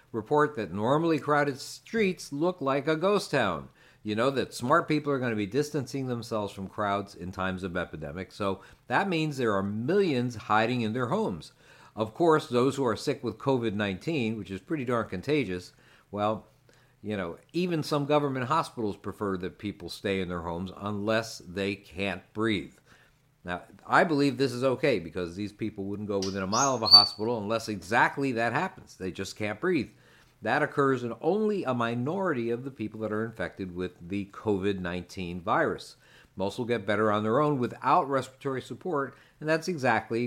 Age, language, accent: 50-69, English, American